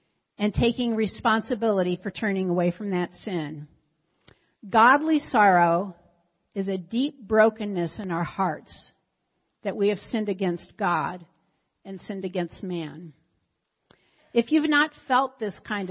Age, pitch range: 50-69, 190-235 Hz